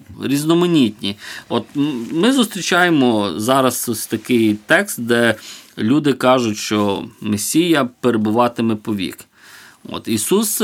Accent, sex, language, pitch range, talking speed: native, male, Ukrainian, 120-160 Hz, 95 wpm